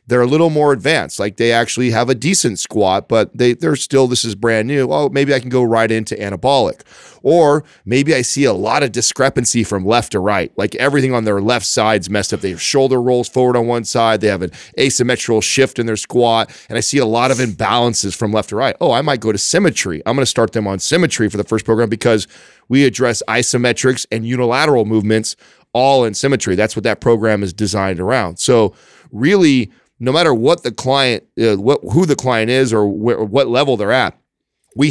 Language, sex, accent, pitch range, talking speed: English, male, American, 105-130 Hz, 220 wpm